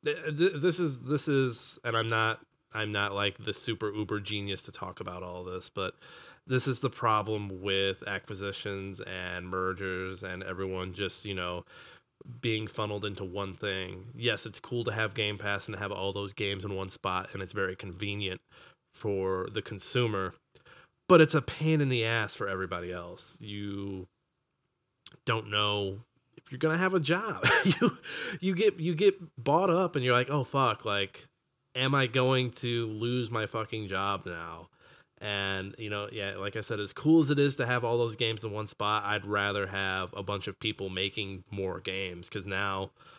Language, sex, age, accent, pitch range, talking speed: English, male, 20-39, American, 100-130 Hz, 185 wpm